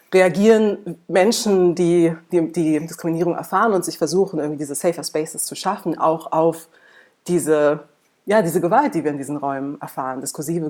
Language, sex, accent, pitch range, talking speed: German, female, German, 150-175 Hz, 165 wpm